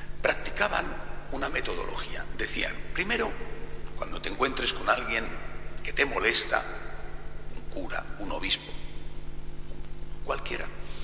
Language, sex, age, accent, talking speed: Spanish, male, 60-79, Spanish, 100 wpm